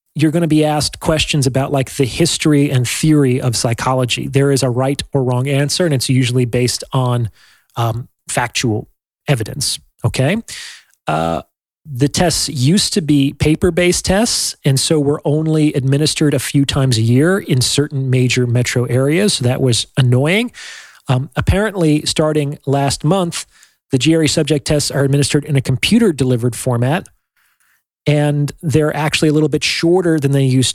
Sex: male